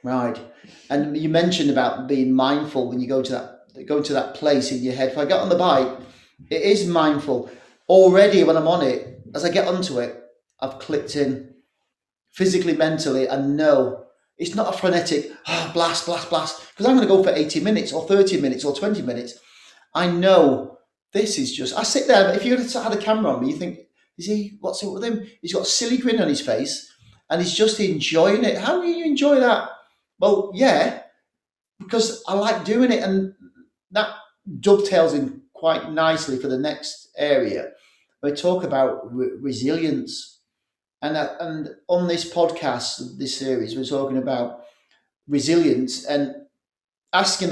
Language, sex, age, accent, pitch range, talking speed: English, male, 30-49, British, 135-200 Hz, 180 wpm